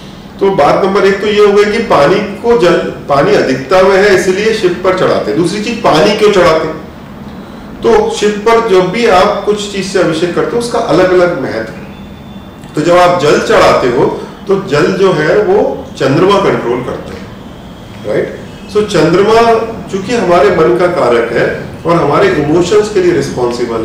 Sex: male